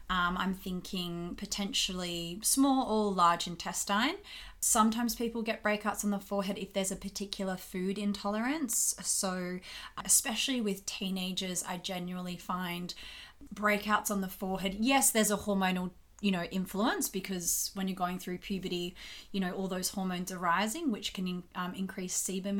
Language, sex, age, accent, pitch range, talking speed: English, female, 30-49, Australian, 180-215 Hz, 155 wpm